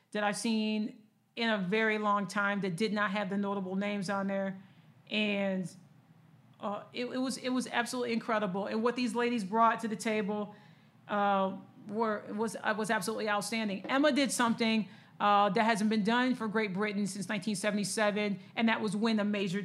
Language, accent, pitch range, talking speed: English, American, 200-225 Hz, 180 wpm